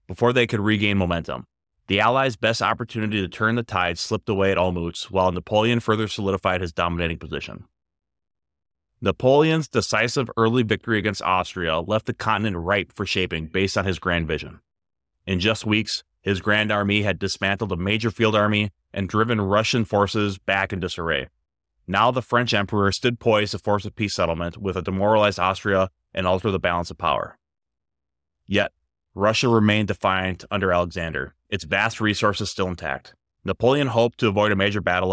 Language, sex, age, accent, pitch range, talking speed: English, male, 30-49, American, 90-105 Hz, 170 wpm